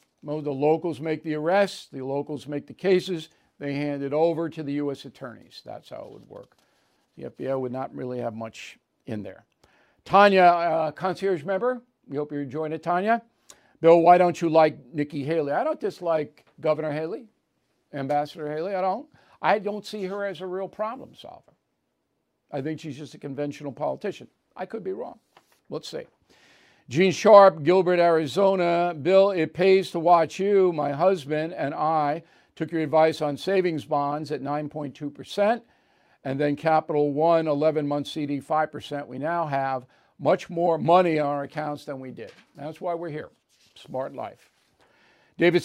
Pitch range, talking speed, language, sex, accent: 145-180 Hz, 170 wpm, English, male, American